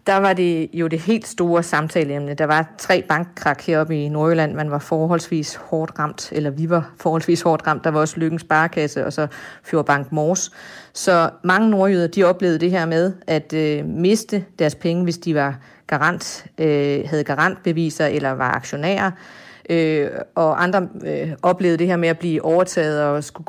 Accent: native